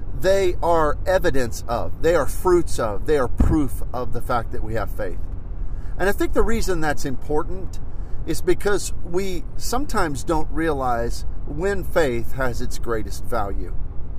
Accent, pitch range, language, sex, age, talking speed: American, 95-145 Hz, English, male, 40-59, 155 wpm